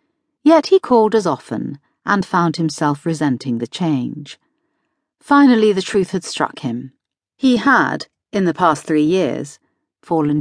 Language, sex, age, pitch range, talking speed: English, female, 40-59, 150-245 Hz, 145 wpm